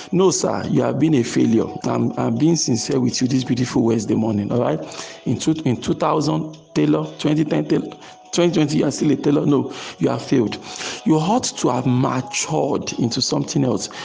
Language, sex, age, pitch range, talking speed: English, male, 50-69, 125-155 Hz, 180 wpm